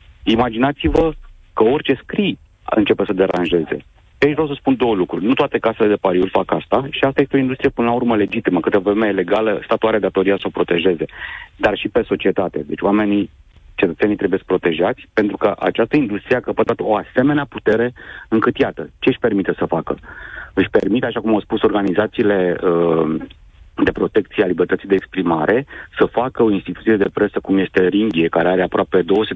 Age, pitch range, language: 40-59, 95-125 Hz, Romanian